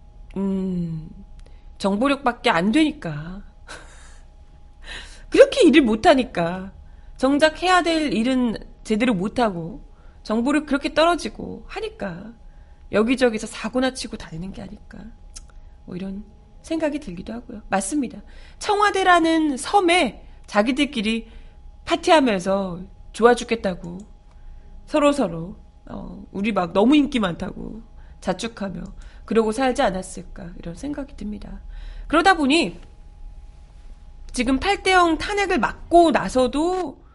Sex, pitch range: female, 185-300 Hz